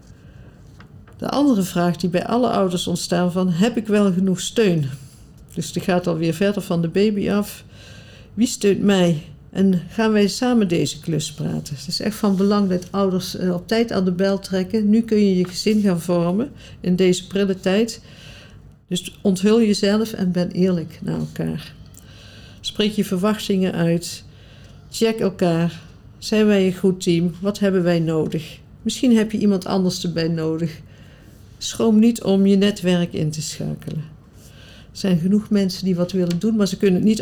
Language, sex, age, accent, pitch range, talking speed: Dutch, female, 50-69, Dutch, 170-200 Hz, 175 wpm